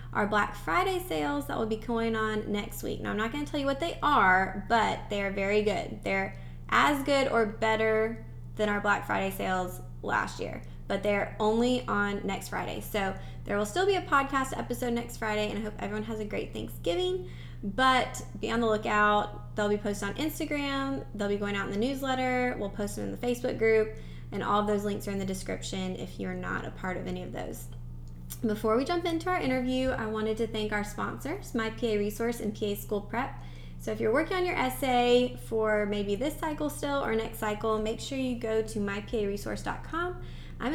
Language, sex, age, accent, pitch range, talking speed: English, female, 20-39, American, 200-245 Hz, 210 wpm